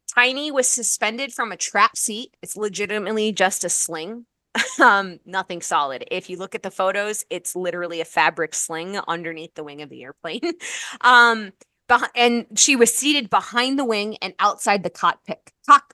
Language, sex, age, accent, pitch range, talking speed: English, female, 20-39, American, 185-250 Hz, 170 wpm